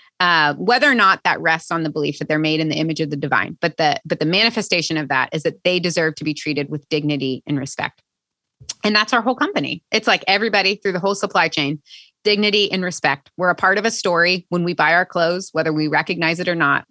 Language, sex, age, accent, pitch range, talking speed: English, female, 20-39, American, 160-210 Hz, 245 wpm